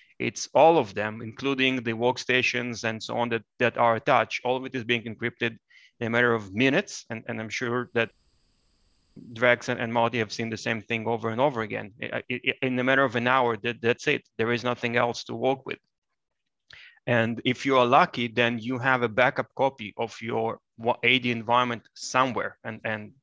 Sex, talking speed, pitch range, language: male, 195 wpm, 115-130 Hz, English